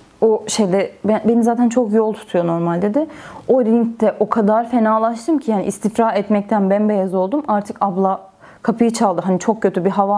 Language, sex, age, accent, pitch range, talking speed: Turkish, female, 30-49, native, 195-245 Hz, 170 wpm